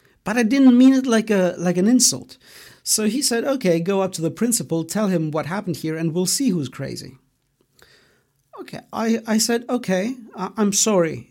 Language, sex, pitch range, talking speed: English, male, 145-190 Hz, 190 wpm